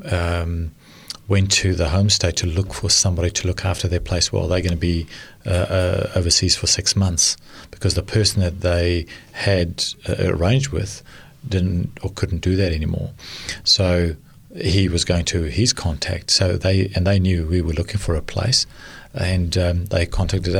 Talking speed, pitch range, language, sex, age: 185 wpm, 85-105 Hz, English, male, 40-59